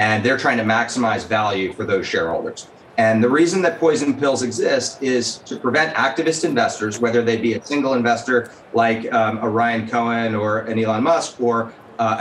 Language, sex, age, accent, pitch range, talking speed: English, male, 30-49, American, 115-155 Hz, 185 wpm